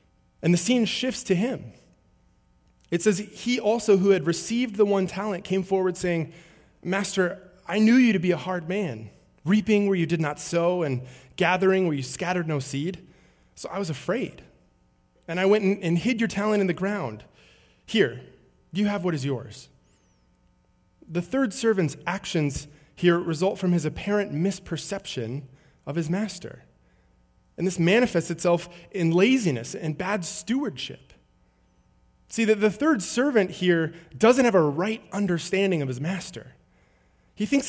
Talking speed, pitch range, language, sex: 160 wpm, 165-210 Hz, English, male